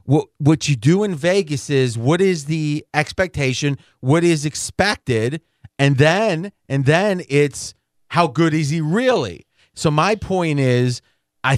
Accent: American